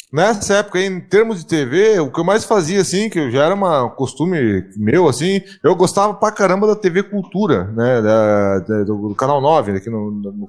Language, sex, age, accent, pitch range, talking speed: Portuguese, male, 20-39, Brazilian, 130-190 Hz, 190 wpm